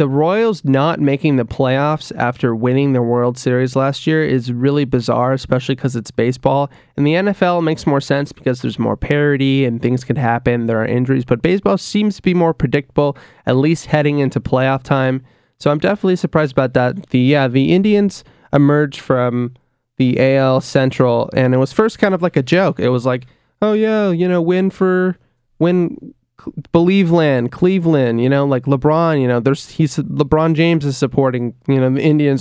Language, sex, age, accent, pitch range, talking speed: English, male, 20-39, American, 125-150 Hz, 190 wpm